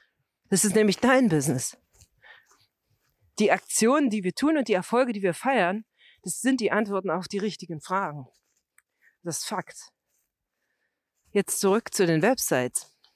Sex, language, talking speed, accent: female, German, 145 wpm, German